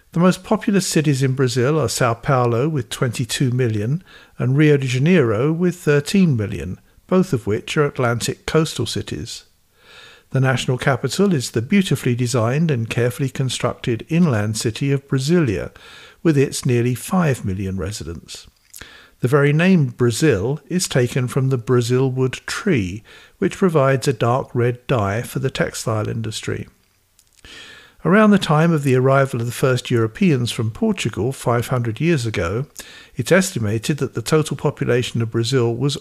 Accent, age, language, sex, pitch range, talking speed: British, 60-79, English, male, 120-155 Hz, 150 wpm